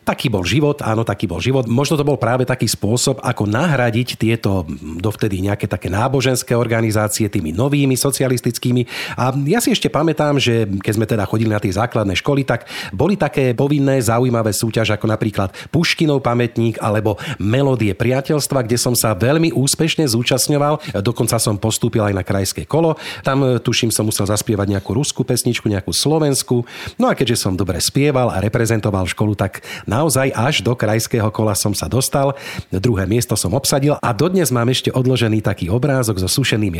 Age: 40-59